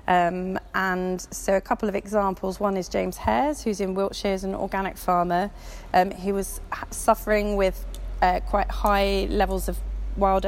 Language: English